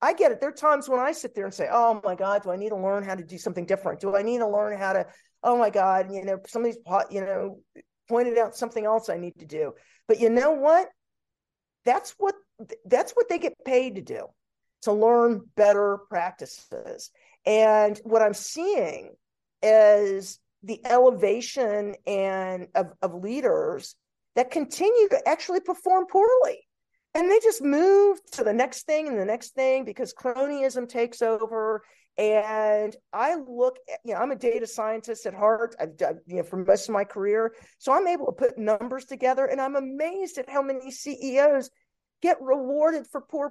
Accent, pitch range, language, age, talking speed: American, 210-300 Hz, English, 40-59, 190 wpm